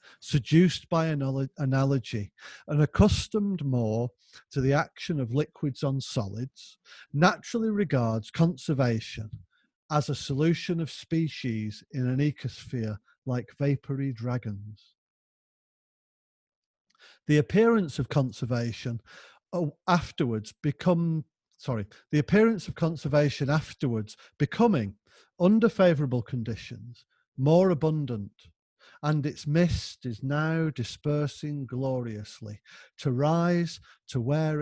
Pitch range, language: 120-165 Hz, English